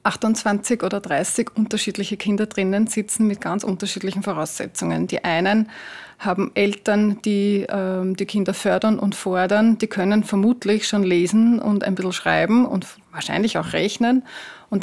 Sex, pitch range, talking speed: female, 195-220 Hz, 145 wpm